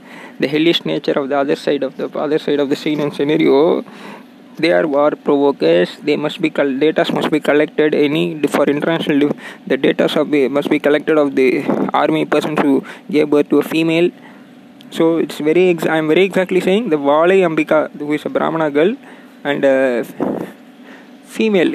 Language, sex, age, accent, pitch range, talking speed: Tamil, male, 20-39, native, 165-250 Hz, 190 wpm